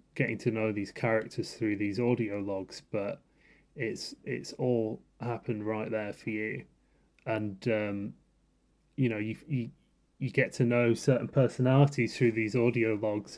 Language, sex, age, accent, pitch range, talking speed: English, male, 30-49, British, 105-120 Hz, 150 wpm